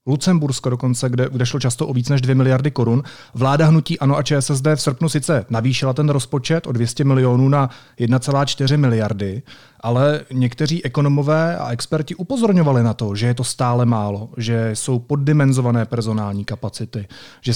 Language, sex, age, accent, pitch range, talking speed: Czech, male, 30-49, native, 125-150 Hz, 165 wpm